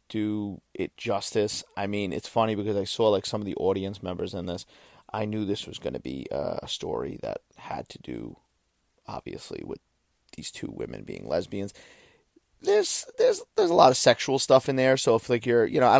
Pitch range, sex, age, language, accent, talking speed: 100-135 Hz, male, 30-49, English, American, 205 wpm